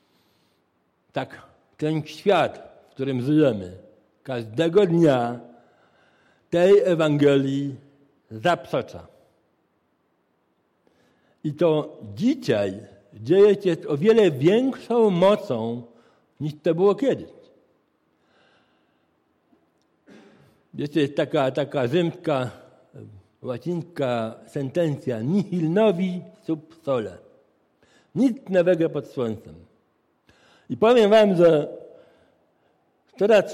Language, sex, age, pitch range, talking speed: Polish, male, 60-79, 140-190 Hz, 80 wpm